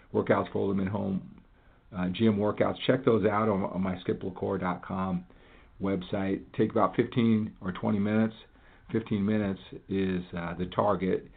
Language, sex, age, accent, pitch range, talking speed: English, male, 50-69, American, 90-110 Hz, 150 wpm